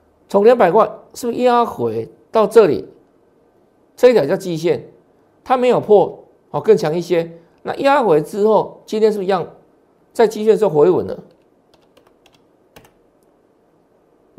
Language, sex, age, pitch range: Chinese, male, 50-69, 175-235 Hz